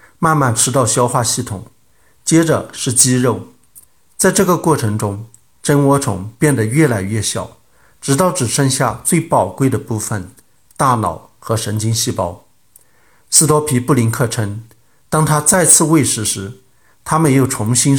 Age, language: 50-69, Chinese